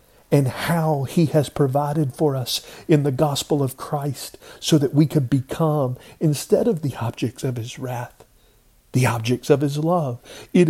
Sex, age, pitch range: male, 50-69, 115-150 Hz